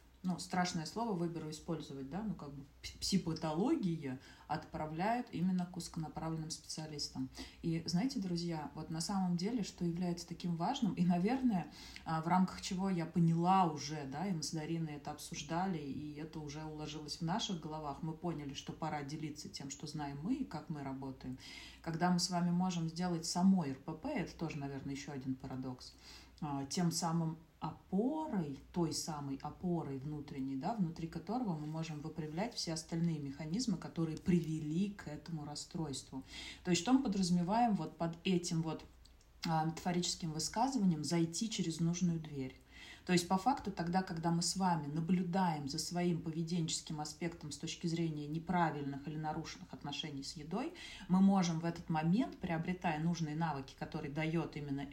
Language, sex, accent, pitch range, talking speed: Russian, female, native, 150-180 Hz, 160 wpm